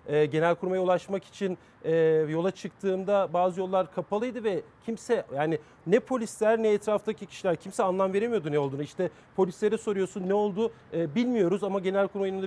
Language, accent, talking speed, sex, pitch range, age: Turkish, native, 150 wpm, male, 180-215 Hz, 40-59